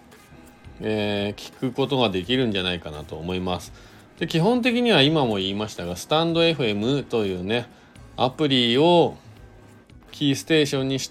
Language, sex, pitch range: Japanese, male, 95-135 Hz